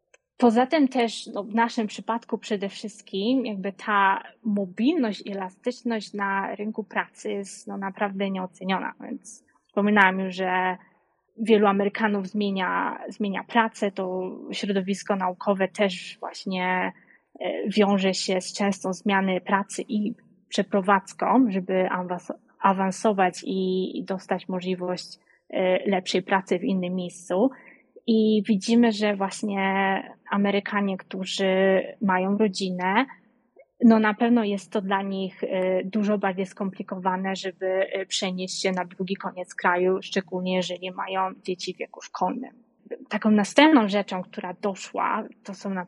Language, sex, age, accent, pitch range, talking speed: Polish, female, 20-39, native, 190-215 Hz, 125 wpm